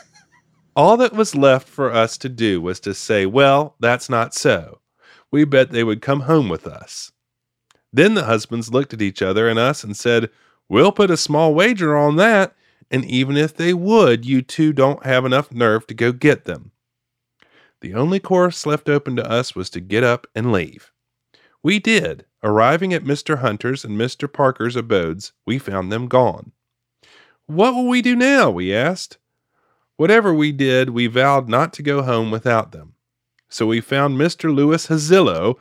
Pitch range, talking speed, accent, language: 115-160 Hz, 180 wpm, American, English